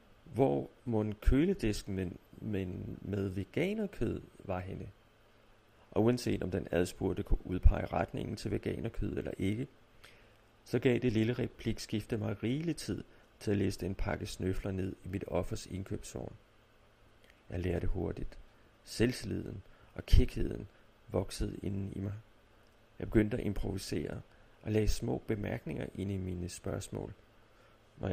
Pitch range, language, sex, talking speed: 95-115 Hz, Danish, male, 140 wpm